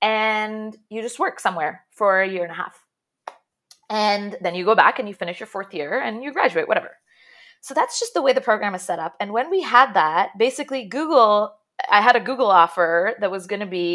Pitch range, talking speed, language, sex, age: 175-240 Hz, 230 wpm, English, female, 20-39